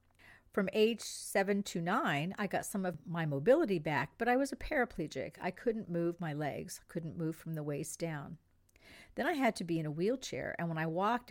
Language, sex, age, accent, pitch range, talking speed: English, female, 50-69, American, 150-200 Hz, 210 wpm